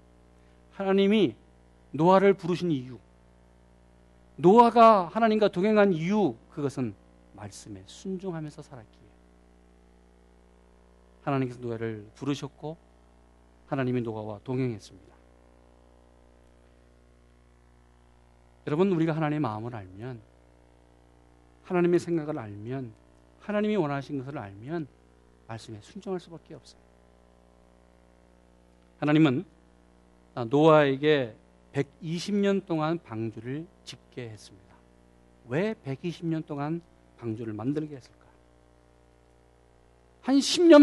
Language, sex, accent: Korean, male, native